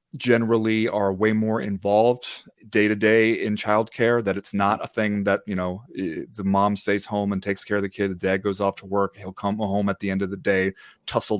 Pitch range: 100-130 Hz